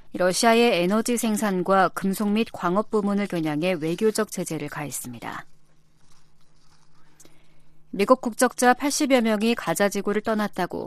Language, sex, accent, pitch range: Korean, female, native, 175-220 Hz